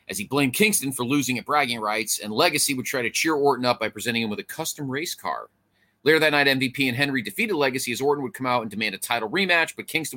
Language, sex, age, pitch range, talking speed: English, male, 30-49, 115-150 Hz, 265 wpm